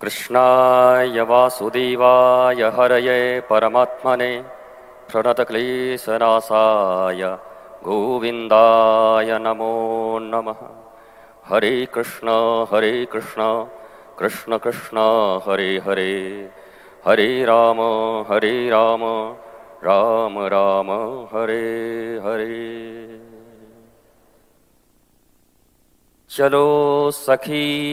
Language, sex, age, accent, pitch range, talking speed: Hindi, male, 40-59, native, 110-125 Hz, 55 wpm